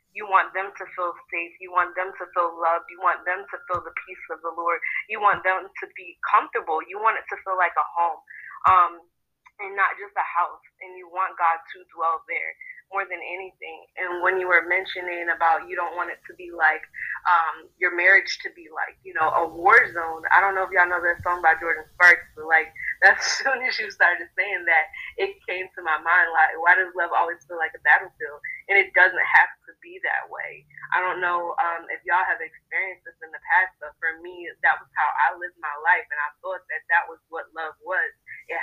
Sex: female